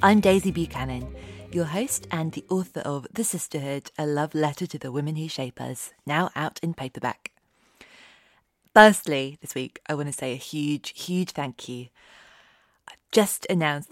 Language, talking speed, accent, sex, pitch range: English, 170 wpm, British, female, 140-170 Hz